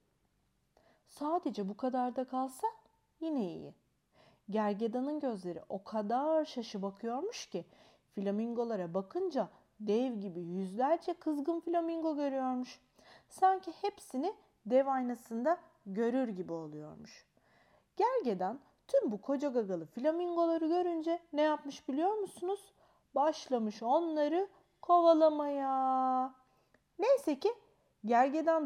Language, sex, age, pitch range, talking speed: Turkish, female, 40-59, 225-335 Hz, 95 wpm